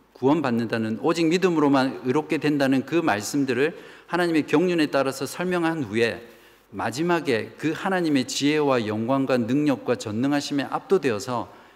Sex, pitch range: male, 115-155 Hz